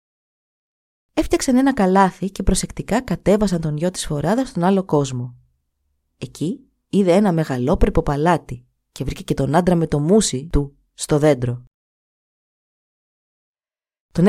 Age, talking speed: 20-39, 125 wpm